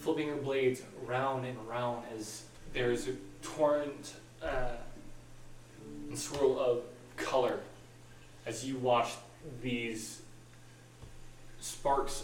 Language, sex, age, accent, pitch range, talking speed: English, male, 20-39, American, 115-135 Hz, 95 wpm